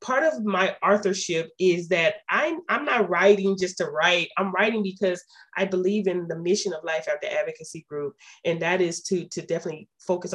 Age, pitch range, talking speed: 30-49, 165-205 Hz, 195 wpm